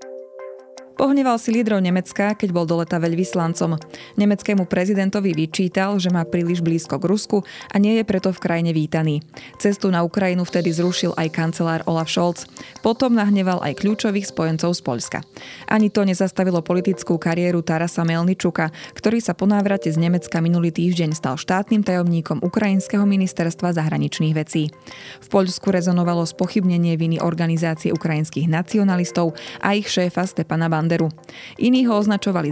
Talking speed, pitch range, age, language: 140 wpm, 165-195 Hz, 20-39, Slovak